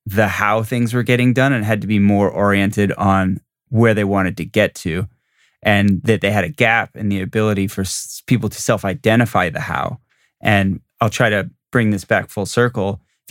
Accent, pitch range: American, 100-115 Hz